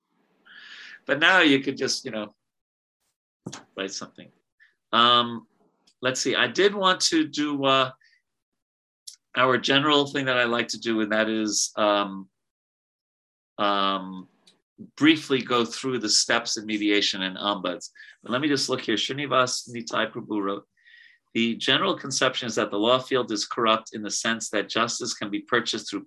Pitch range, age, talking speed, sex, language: 105-135 Hz, 40-59, 160 wpm, male, English